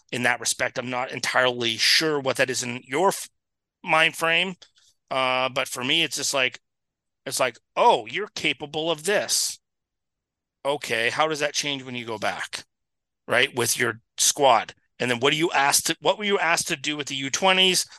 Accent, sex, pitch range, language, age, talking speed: American, male, 130-180 Hz, English, 30-49, 195 wpm